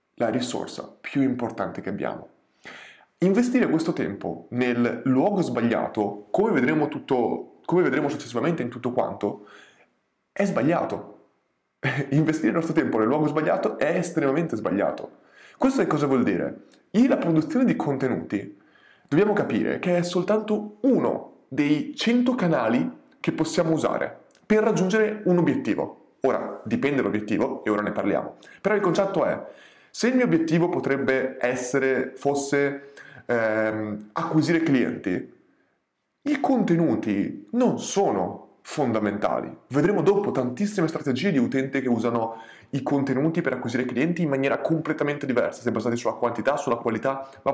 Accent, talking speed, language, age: native, 140 wpm, Italian, 20-39